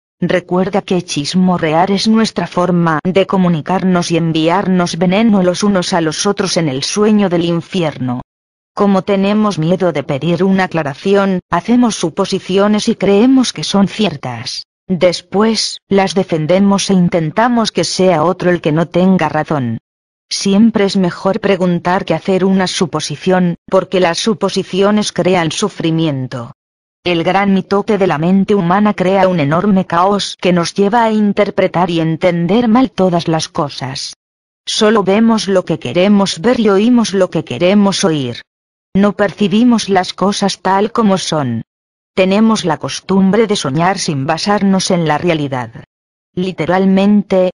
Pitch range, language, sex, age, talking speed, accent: 165-200 Hz, Spanish, female, 40-59, 145 wpm, Spanish